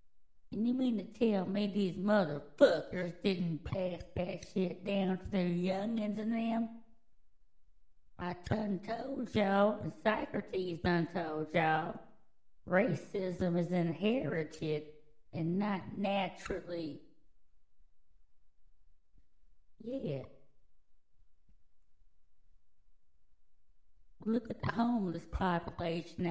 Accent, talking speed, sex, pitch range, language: American, 90 wpm, female, 160-200 Hz, English